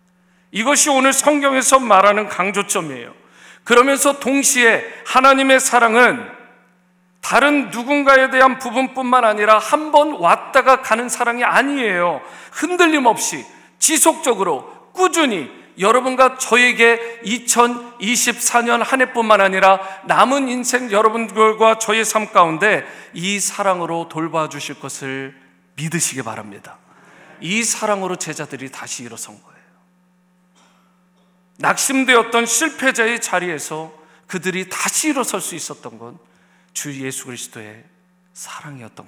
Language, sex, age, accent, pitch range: Korean, male, 40-59, native, 155-235 Hz